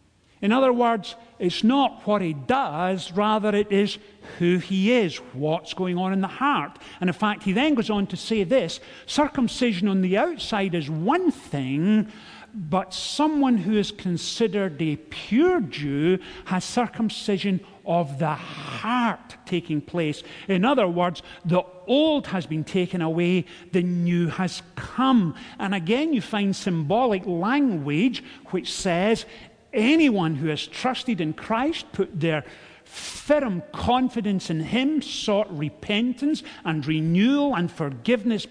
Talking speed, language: 140 wpm, English